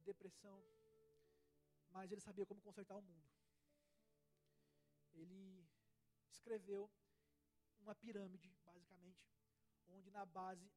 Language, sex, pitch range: Portuguese, male, 175-235 Hz